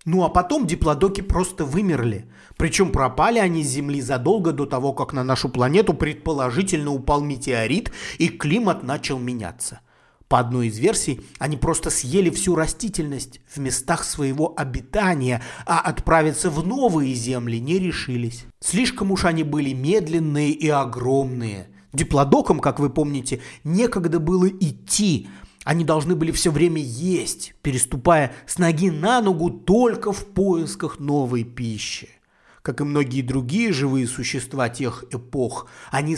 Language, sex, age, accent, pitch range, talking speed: Russian, male, 30-49, native, 125-170 Hz, 140 wpm